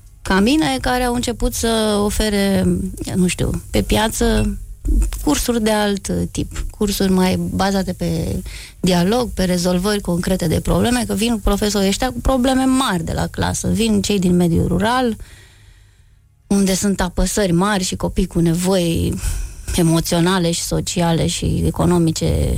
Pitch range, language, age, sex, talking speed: 165-205 Hz, Romanian, 20-39, female, 140 wpm